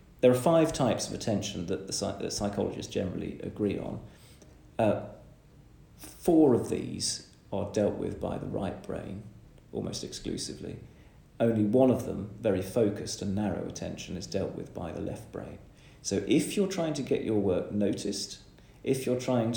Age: 40-59